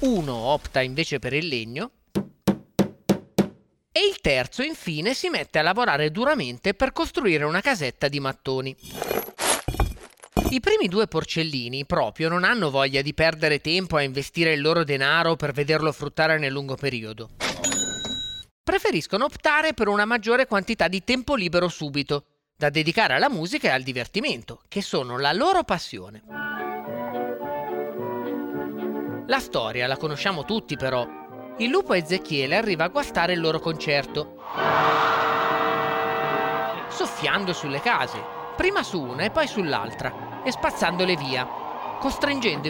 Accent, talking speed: native, 130 wpm